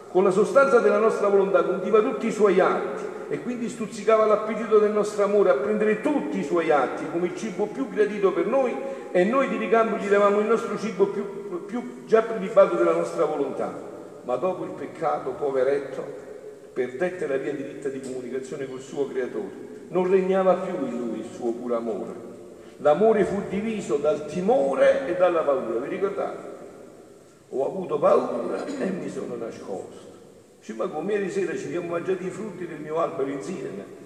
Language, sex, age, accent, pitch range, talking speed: Italian, male, 50-69, native, 180-220 Hz, 180 wpm